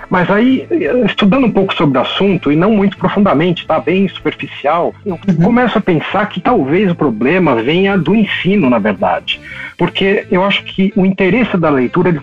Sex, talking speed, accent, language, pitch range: male, 180 wpm, Brazilian, Portuguese, 125-190 Hz